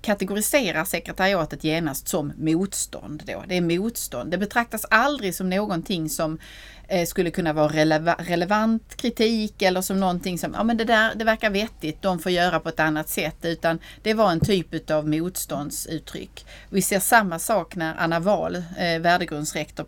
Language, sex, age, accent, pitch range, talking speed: English, female, 30-49, Swedish, 160-205 Hz, 160 wpm